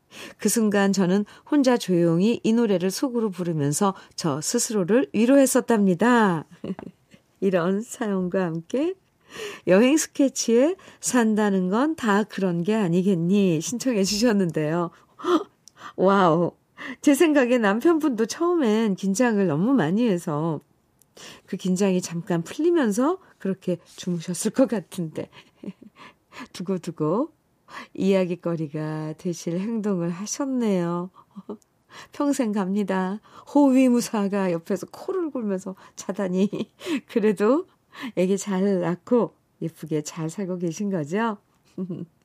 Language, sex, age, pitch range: Korean, female, 50-69, 185-250 Hz